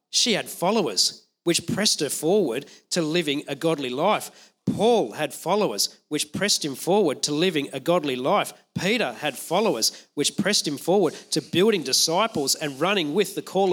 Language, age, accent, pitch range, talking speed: English, 40-59, Australian, 150-185 Hz, 170 wpm